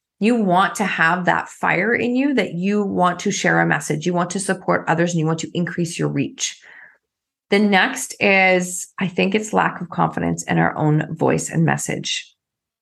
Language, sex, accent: English, female, American